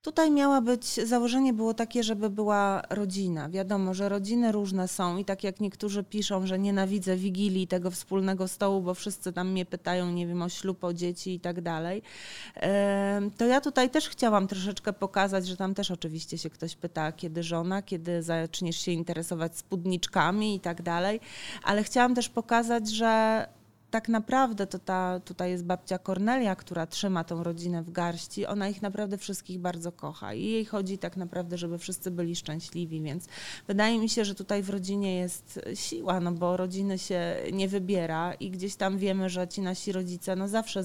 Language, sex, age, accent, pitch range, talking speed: Polish, female, 30-49, native, 175-205 Hz, 180 wpm